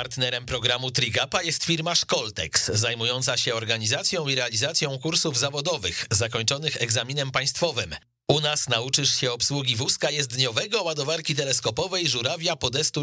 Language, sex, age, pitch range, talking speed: Polish, male, 40-59, 100-130 Hz, 125 wpm